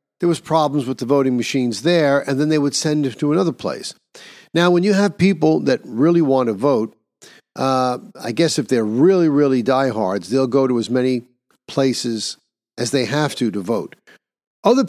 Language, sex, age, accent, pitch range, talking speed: English, male, 50-69, American, 120-155 Hz, 195 wpm